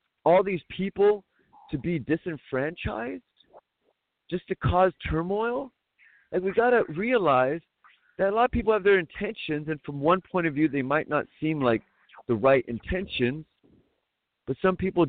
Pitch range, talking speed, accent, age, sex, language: 120-190 Hz, 160 wpm, American, 40-59, male, English